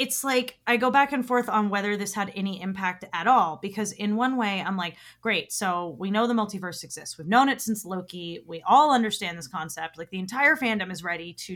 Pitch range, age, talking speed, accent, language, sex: 170-230 Hz, 30-49, 235 wpm, American, English, female